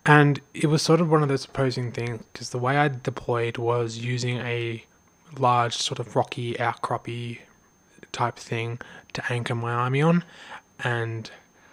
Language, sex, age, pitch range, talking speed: English, male, 20-39, 115-135 Hz, 160 wpm